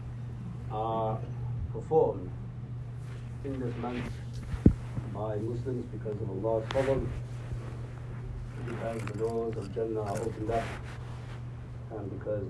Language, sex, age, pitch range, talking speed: English, male, 50-69, 120-125 Hz, 100 wpm